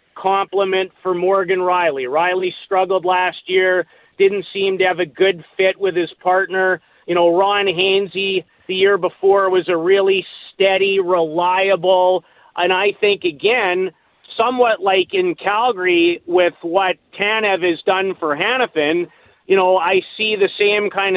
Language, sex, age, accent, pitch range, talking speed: English, male, 40-59, American, 180-205 Hz, 145 wpm